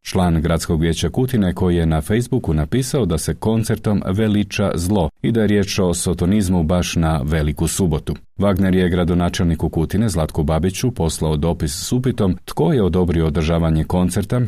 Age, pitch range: 40-59, 85-100 Hz